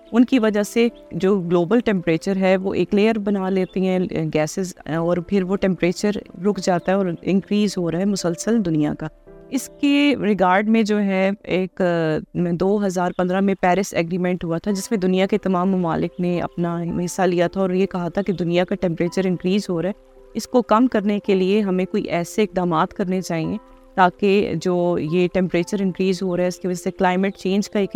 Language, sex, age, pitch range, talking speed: Urdu, female, 20-39, 180-205 Hz, 205 wpm